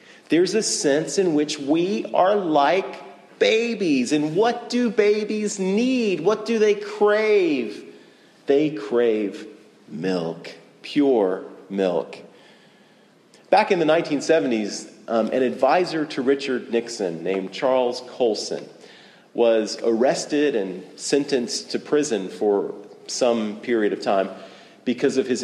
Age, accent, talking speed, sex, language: 40-59, American, 120 wpm, male, English